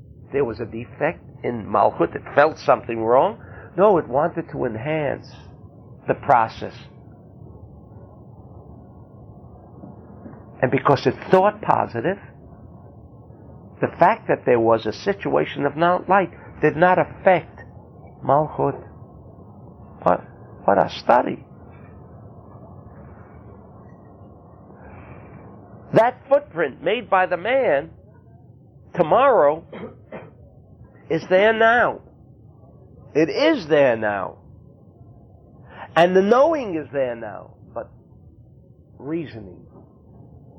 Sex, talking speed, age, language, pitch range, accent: male, 90 wpm, 60-79, English, 110-155 Hz, American